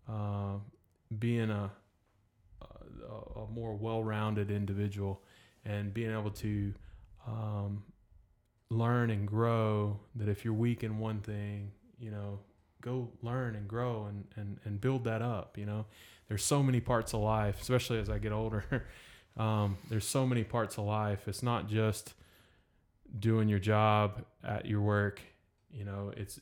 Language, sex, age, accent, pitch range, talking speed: English, male, 20-39, American, 100-115 Hz, 155 wpm